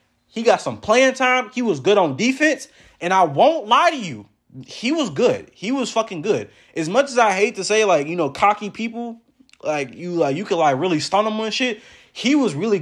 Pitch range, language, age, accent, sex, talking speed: 125-185 Hz, English, 20-39, American, male, 230 wpm